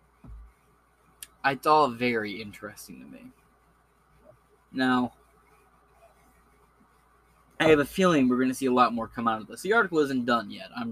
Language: English